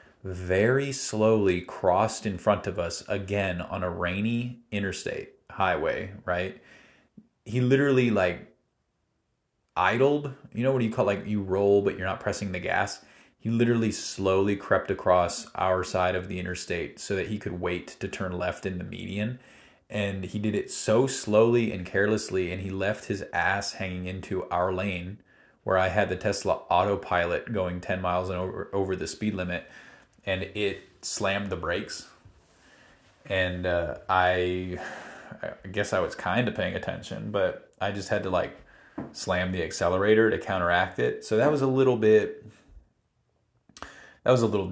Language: English